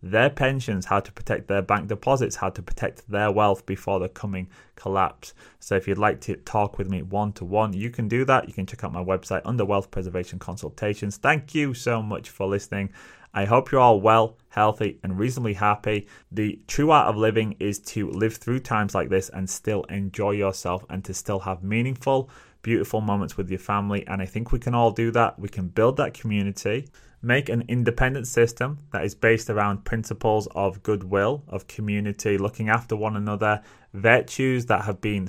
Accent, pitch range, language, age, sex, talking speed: British, 95-115 Hz, English, 30-49, male, 200 wpm